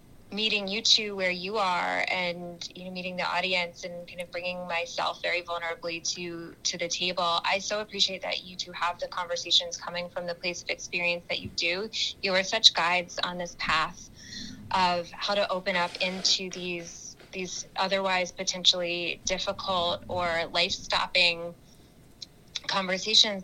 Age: 20-39